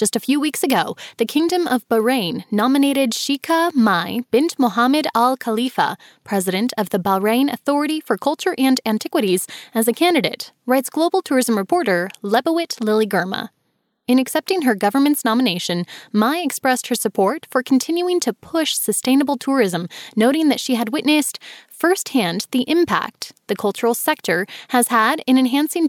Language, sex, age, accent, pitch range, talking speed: English, female, 10-29, American, 220-285 Hz, 150 wpm